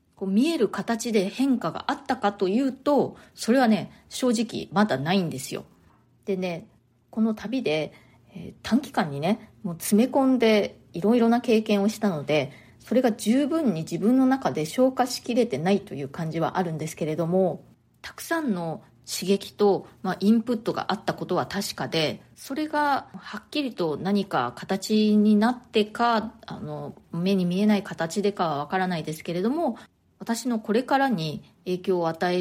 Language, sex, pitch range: Japanese, female, 170-235 Hz